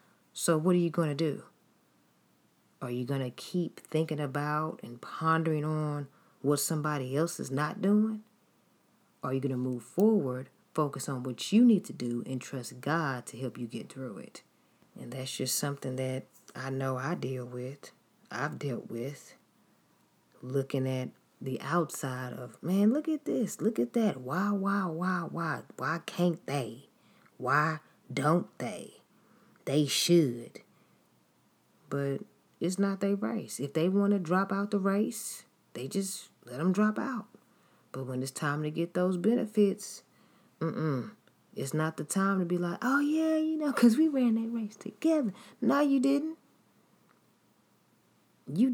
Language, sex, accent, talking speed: English, female, American, 165 wpm